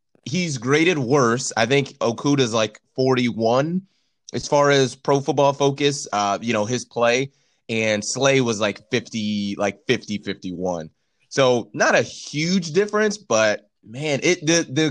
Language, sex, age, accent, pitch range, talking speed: English, male, 20-39, American, 110-140 Hz, 150 wpm